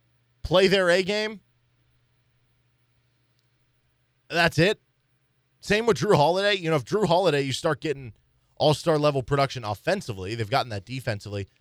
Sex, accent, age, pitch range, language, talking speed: male, American, 20-39, 120-145 Hz, English, 135 wpm